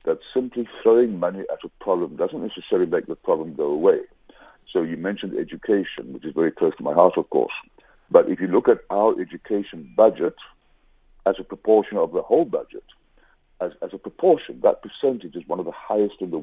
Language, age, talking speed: English, 60-79, 200 wpm